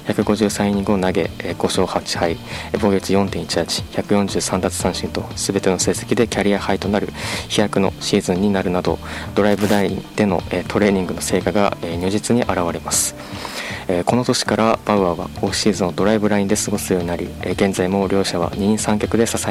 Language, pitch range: Japanese, 90-105 Hz